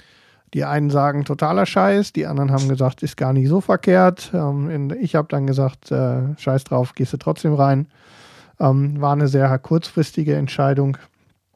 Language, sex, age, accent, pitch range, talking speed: German, male, 40-59, German, 135-160 Hz, 165 wpm